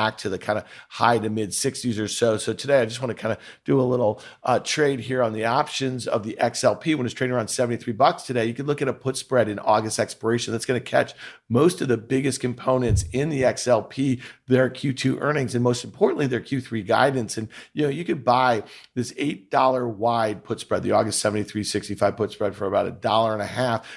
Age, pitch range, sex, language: 50-69, 115-135 Hz, male, English